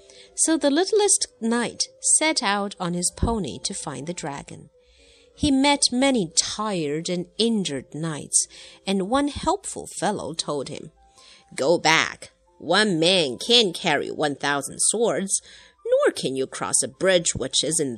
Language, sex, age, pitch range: Chinese, female, 50-69, 165-260 Hz